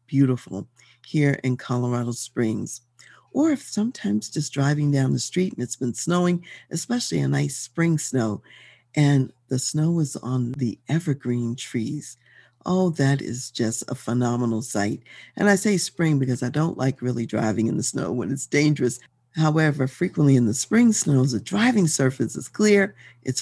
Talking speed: 165 wpm